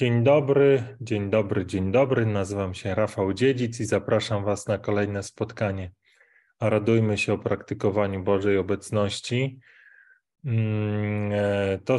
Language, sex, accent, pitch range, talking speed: Polish, male, native, 105-120 Hz, 120 wpm